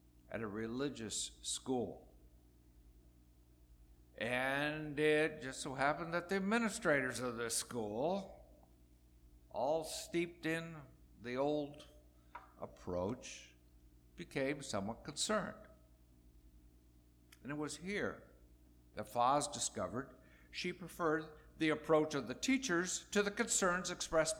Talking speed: 105 wpm